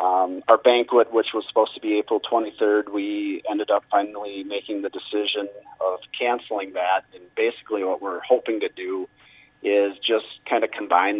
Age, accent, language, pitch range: 40-59, American, English, 100-130 Hz